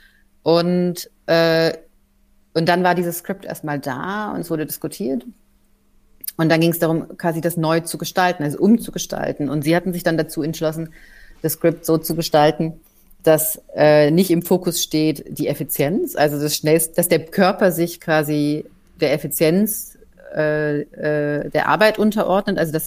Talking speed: 160 wpm